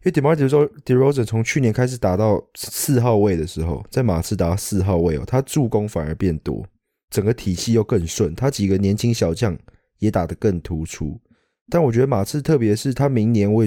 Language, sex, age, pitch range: English, male, 20-39, 95-125 Hz